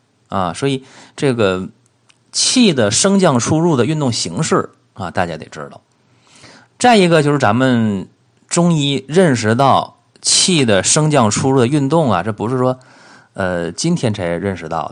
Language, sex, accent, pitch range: Chinese, male, native, 110-145 Hz